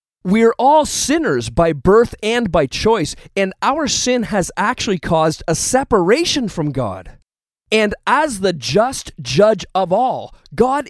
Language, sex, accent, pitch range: English, male, American, 165-245 Hz